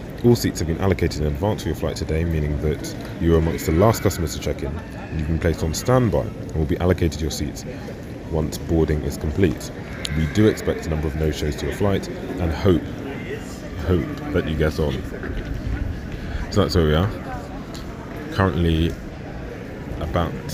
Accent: British